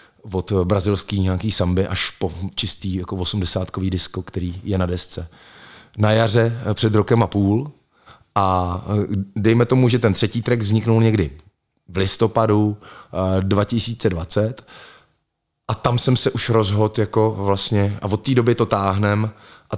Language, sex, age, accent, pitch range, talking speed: Czech, male, 30-49, native, 100-115 Hz, 135 wpm